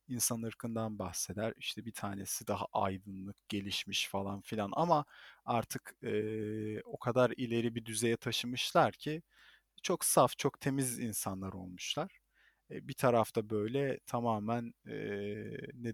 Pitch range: 105-140 Hz